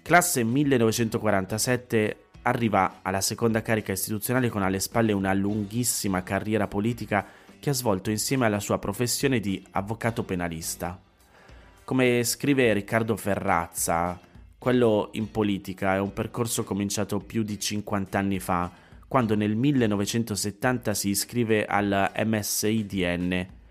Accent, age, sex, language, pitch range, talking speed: native, 30-49, male, Italian, 95-115 Hz, 120 wpm